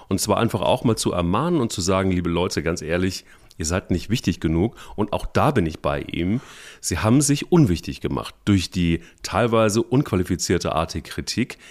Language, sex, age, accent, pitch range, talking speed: German, male, 40-59, German, 85-110 Hz, 190 wpm